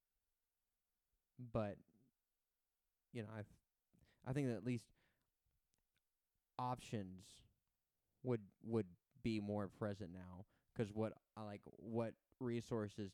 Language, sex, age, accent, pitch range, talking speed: English, male, 20-39, American, 95-115 Hz, 100 wpm